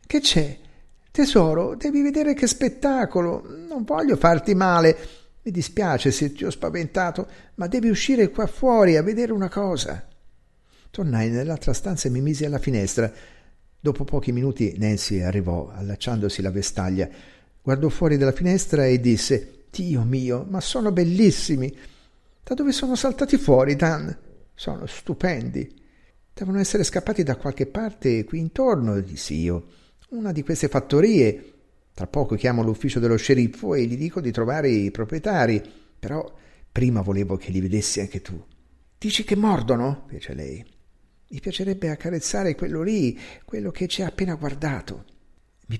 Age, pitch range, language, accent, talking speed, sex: 50-69, 115-180 Hz, Italian, native, 150 wpm, male